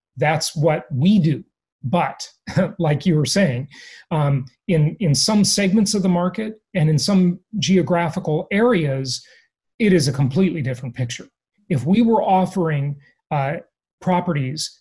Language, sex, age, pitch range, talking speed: English, male, 30-49, 155-210 Hz, 140 wpm